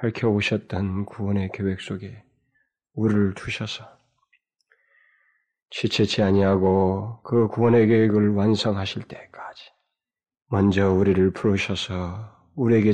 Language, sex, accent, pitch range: Korean, male, native, 95-110 Hz